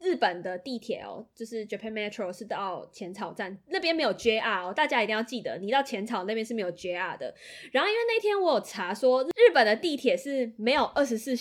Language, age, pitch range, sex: Chinese, 20-39, 195-265 Hz, female